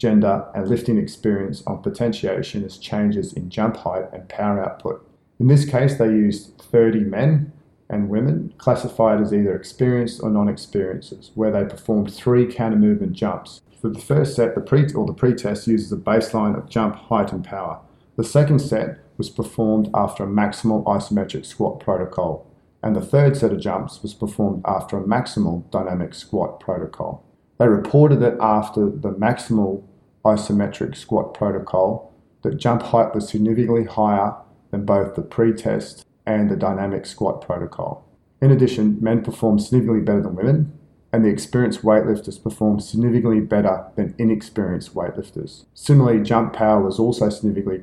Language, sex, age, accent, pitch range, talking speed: English, male, 40-59, Australian, 105-120 Hz, 160 wpm